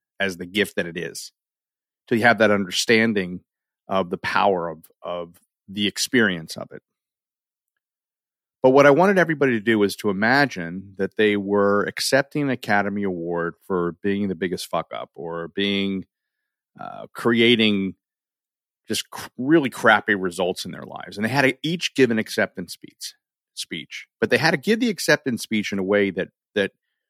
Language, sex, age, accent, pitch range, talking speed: English, male, 40-59, American, 95-125 Hz, 175 wpm